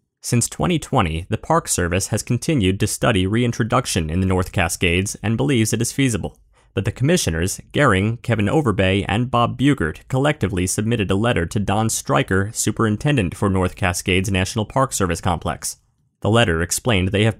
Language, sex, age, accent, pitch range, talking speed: English, male, 30-49, American, 95-120 Hz, 165 wpm